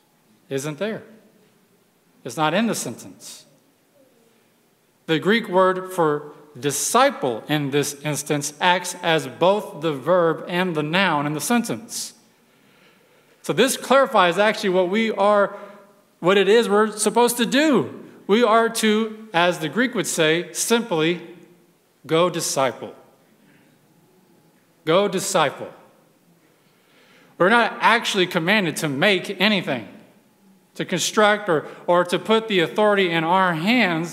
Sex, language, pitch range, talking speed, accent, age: male, English, 170-225 Hz, 125 wpm, American, 40-59